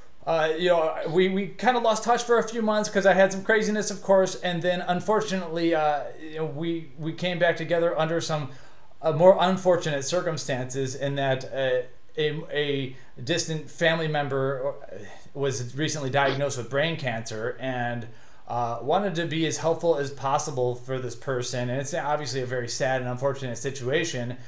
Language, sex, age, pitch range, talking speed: English, male, 30-49, 130-170 Hz, 175 wpm